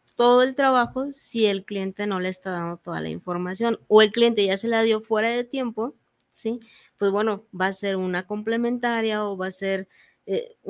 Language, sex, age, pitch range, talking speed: Spanish, female, 20-39, 205-230 Hz, 200 wpm